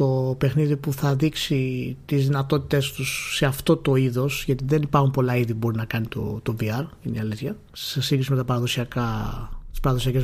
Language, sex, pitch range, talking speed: Greek, male, 130-170 Hz, 180 wpm